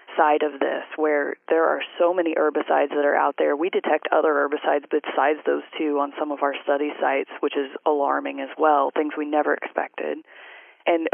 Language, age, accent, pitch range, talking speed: English, 30-49, American, 150-185 Hz, 195 wpm